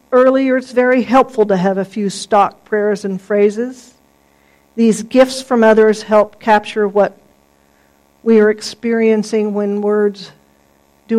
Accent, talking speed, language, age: American, 135 wpm, English, 50-69